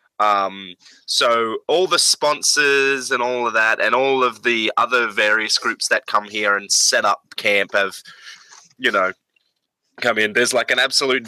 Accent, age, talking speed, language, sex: Australian, 20-39, 170 wpm, English, male